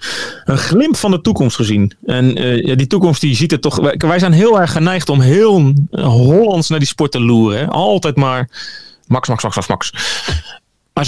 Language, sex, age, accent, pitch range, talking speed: Dutch, male, 40-59, Dutch, 125-165 Hz, 200 wpm